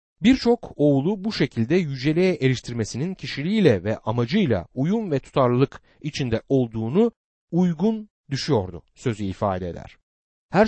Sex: male